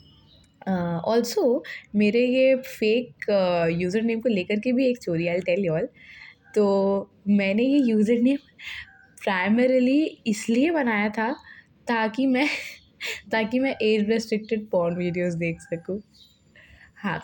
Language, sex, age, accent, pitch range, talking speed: Hindi, female, 20-39, native, 170-220 Hz, 120 wpm